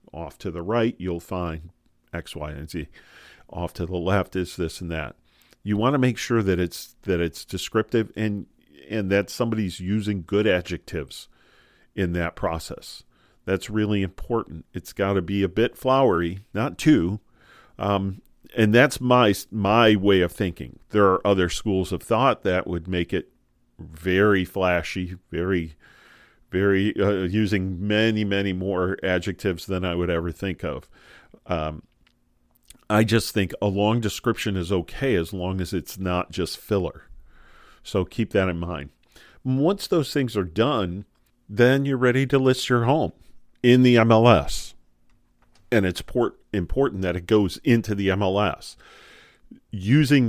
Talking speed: 155 wpm